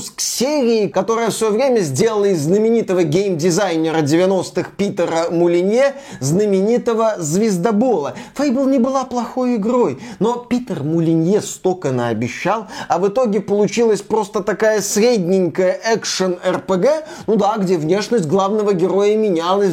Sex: male